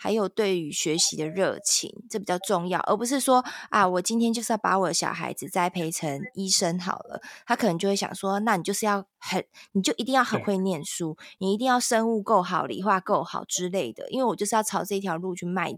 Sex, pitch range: female, 185-225 Hz